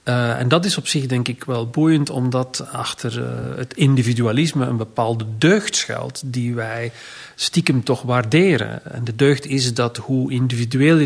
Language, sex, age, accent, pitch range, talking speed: Dutch, male, 40-59, Dutch, 125-150 Hz, 170 wpm